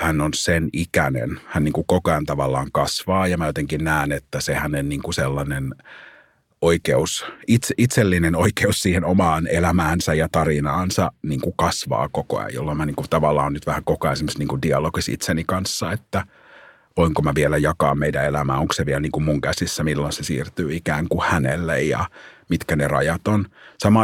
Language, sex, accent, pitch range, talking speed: Finnish, male, native, 75-90 Hz, 185 wpm